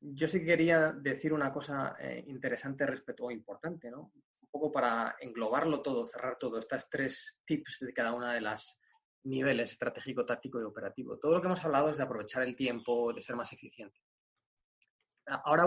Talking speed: 185 wpm